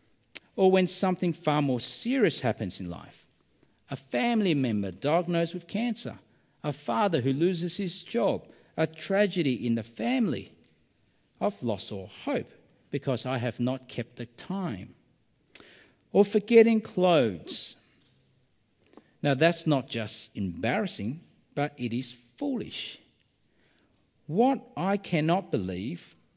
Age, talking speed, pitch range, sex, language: 50-69, 120 wpm, 125-205 Hz, male, English